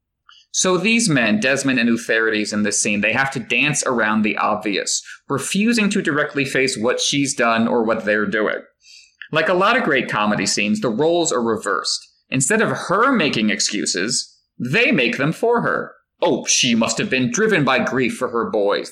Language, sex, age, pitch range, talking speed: English, male, 30-49, 125-200 Hz, 185 wpm